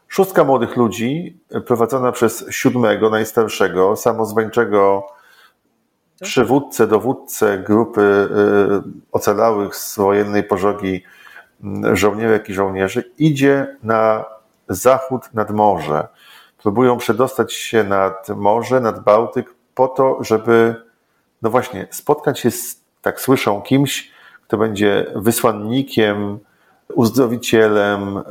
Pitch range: 100-125 Hz